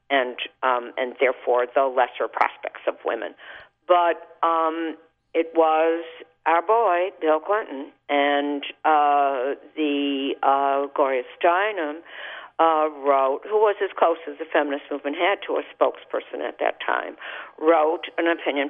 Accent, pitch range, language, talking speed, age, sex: American, 135-160 Hz, English, 140 wpm, 50-69, female